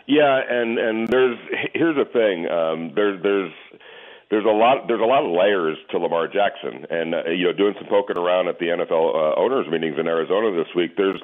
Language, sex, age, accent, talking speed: English, male, 40-59, American, 215 wpm